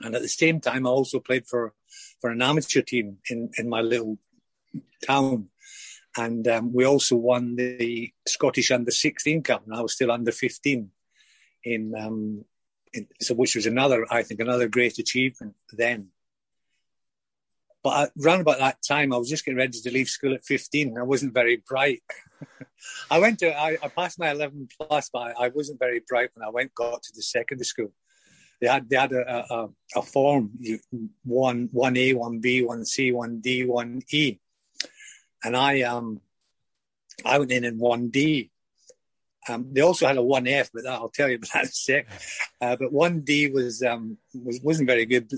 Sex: male